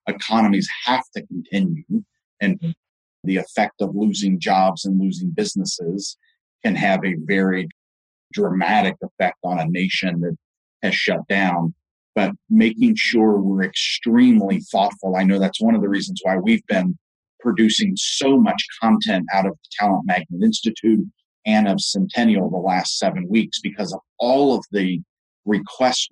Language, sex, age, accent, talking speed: English, male, 40-59, American, 150 wpm